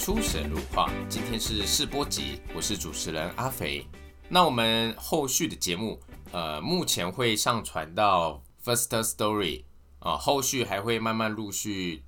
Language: Chinese